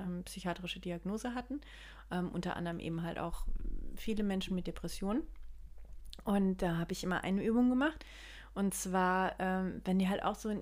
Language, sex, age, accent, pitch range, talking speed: German, female, 30-49, German, 180-220 Hz, 170 wpm